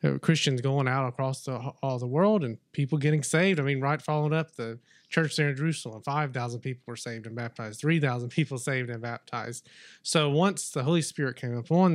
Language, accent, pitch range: English, American, 120-150 Hz